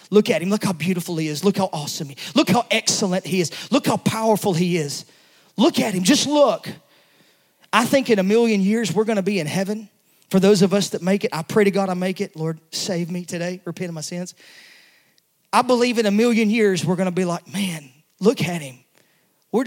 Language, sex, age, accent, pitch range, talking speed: English, male, 30-49, American, 185-250 Hz, 240 wpm